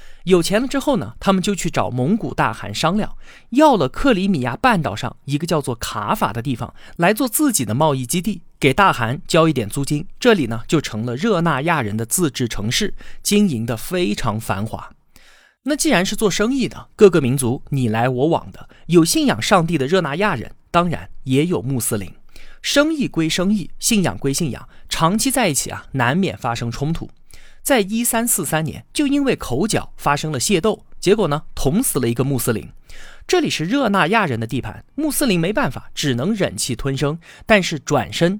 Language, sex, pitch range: Chinese, male, 125-205 Hz